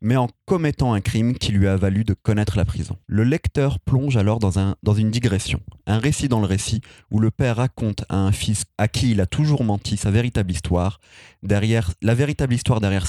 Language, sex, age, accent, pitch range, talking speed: French, male, 30-49, French, 100-120 Hz, 220 wpm